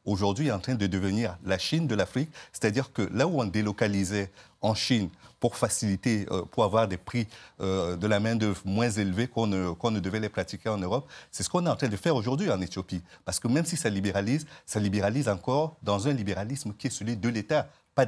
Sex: male